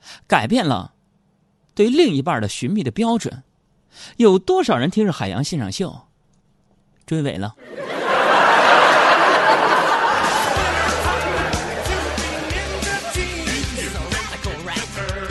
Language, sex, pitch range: Chinese, male, 105-155 Hz